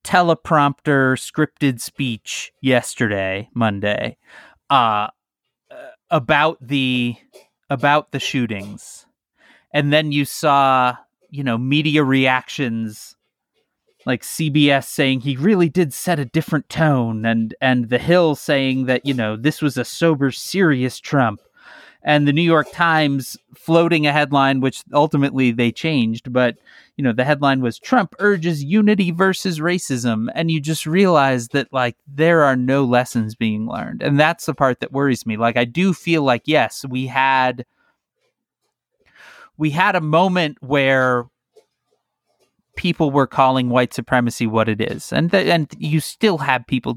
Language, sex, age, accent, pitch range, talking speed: English, male, 30-49, American, 125-160 Hz, 145 wpm